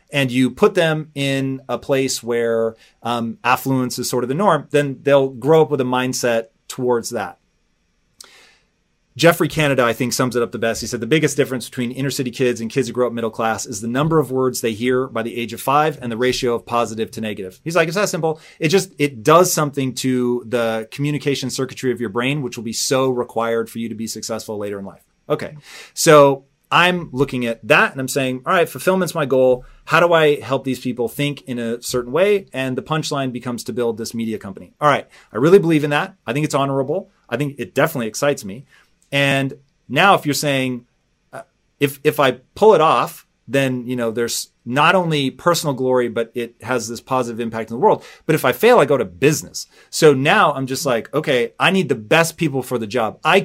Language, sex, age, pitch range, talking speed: English, male, 30-49, 120-150 Hz, 225 wpm